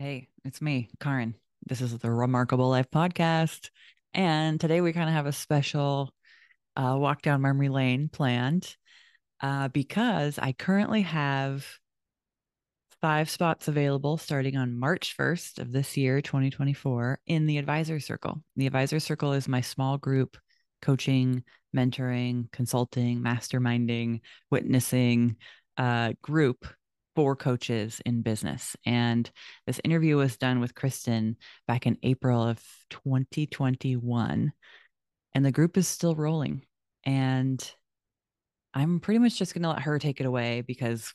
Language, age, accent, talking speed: English, 20-39, American, 135 wpm